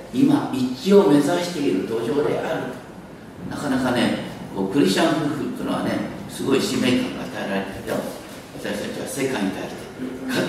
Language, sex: Japanese, male